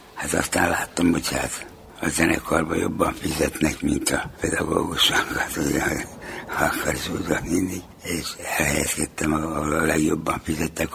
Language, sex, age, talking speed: Hungarian, male, 60-79, 120 wpm